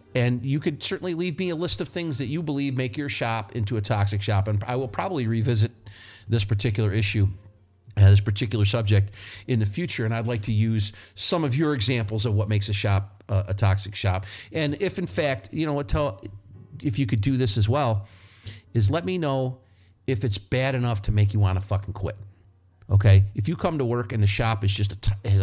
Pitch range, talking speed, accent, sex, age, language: 100-120 Hz, 225 wpm, American, male, 50-69, English